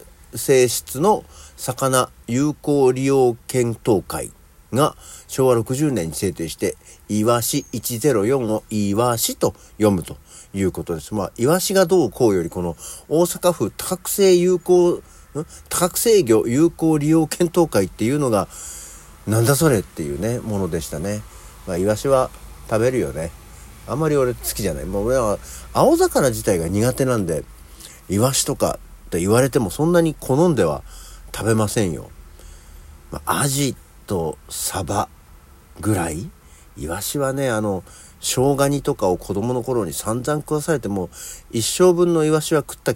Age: 50-69